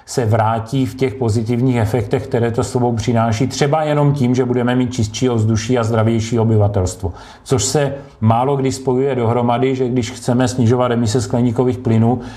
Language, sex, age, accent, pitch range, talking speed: Czech, male, 40-59, native, 110-125 Hz, 165 wpm